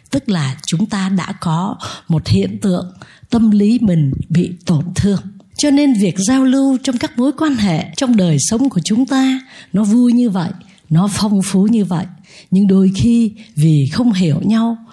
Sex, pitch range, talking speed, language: female, 175-250 Hz, 190 wpm, Vietnamese